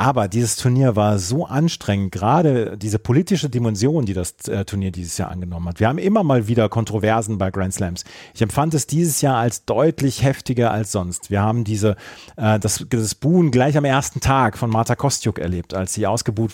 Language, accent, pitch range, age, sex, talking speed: German, German, 105-130 Hz, 40-59, male, 190 wpm